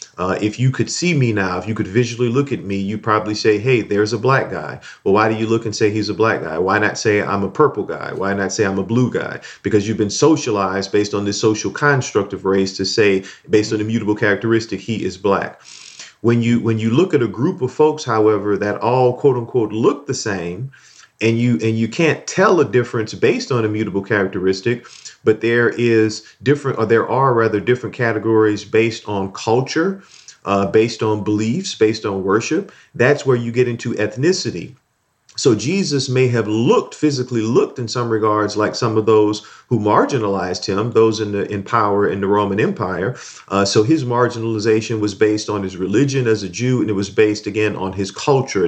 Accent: American